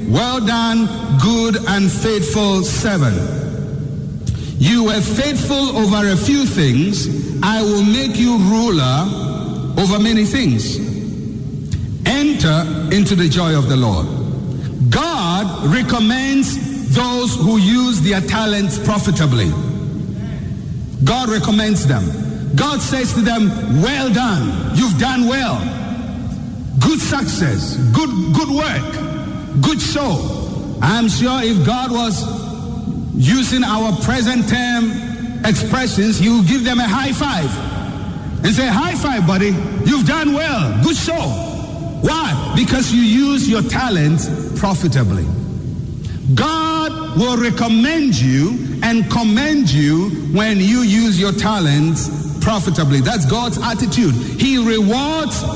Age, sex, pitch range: 60-79, male, 155-240 Hz